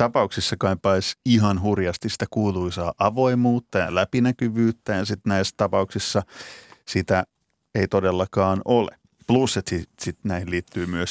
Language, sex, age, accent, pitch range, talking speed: Finnish, male, 30-49, native, 95-115 Hz, 130 wpm